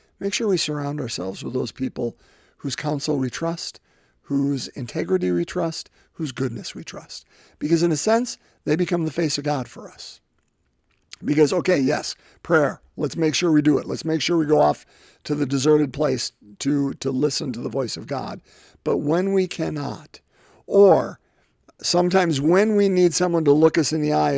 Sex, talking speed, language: male, 185 wpm, English